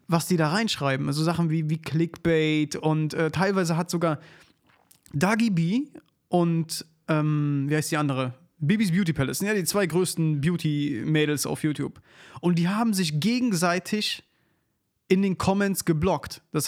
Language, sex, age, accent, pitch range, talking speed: German, male, 30-49, German, 150-185 Hz, 155 wpm